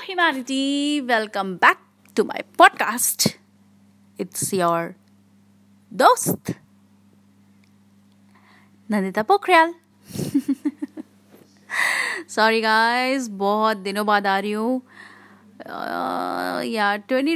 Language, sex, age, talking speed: Hindi, female, 30-49, 70 wpm